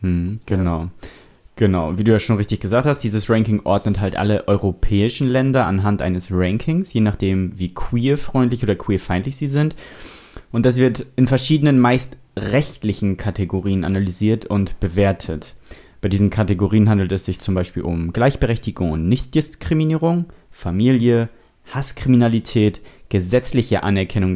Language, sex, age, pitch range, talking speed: German, male, 30-49, 95-125 Hz, 135 wpm